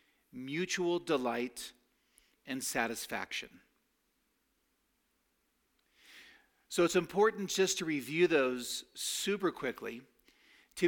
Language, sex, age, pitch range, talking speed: English, male, 40-59, 130-180 Hz, 75 wpm